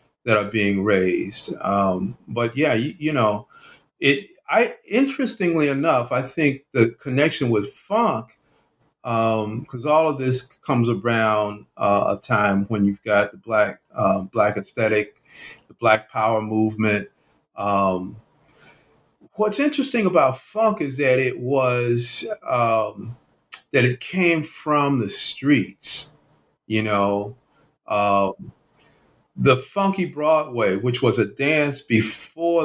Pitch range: 110-140 Hz